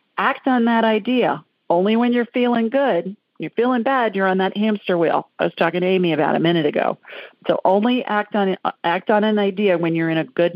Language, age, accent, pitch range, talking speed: English, 50-69, American, 170-210 Hz, 220 wpm